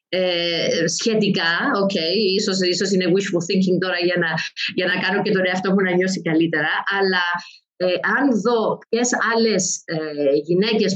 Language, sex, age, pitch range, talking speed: Greek, female, 30-49, 180-230 Hz, 160 wpm